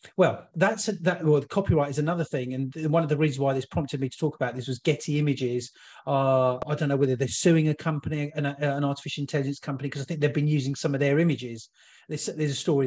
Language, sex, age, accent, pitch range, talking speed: English, male, 30-49, British, 135-170 Hz, 255 wpm